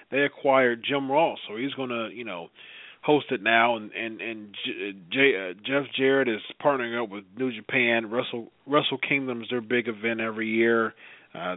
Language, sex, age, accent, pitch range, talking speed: English, male, 40-59, American, 115-145 Hz, 180 wpm